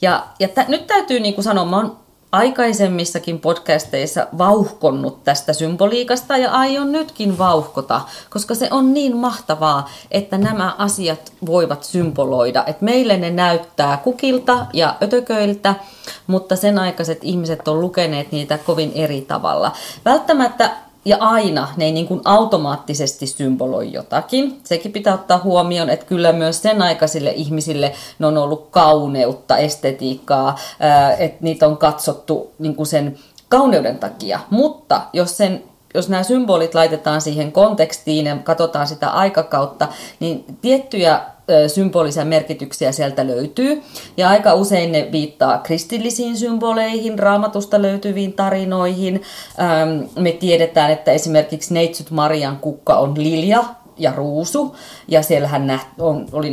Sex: female